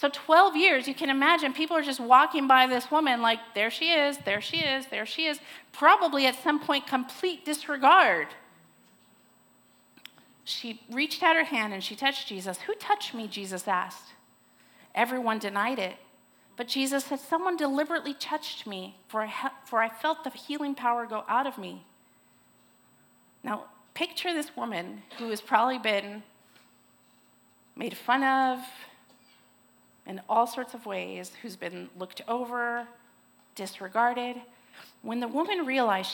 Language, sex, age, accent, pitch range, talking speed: English, female, 40-59, American, 210-285 Hz, 150 wpm